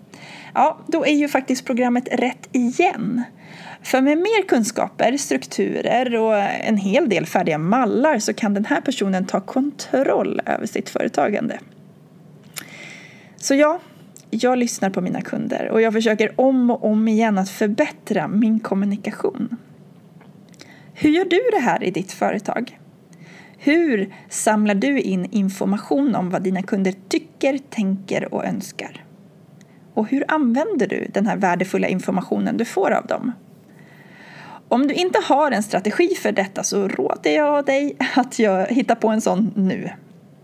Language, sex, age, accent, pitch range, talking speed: Swedish, female, 30-49, native, 190-265 Hz, 145 wpm